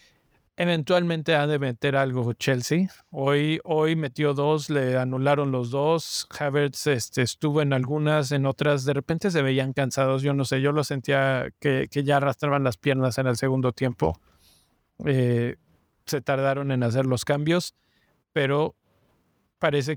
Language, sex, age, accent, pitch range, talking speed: Spanish, male, 50-69, Mexican, 135-160 Hz, 155 wpm